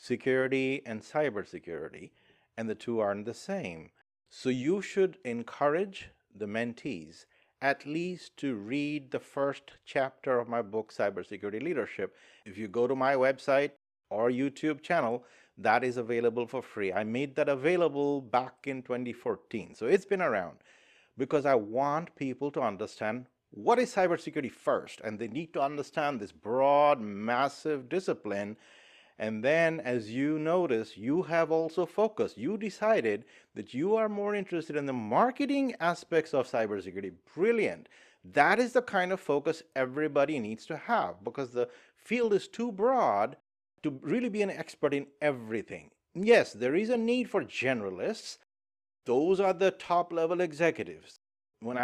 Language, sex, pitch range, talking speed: English, male, 125-170 Hz, 150 wpm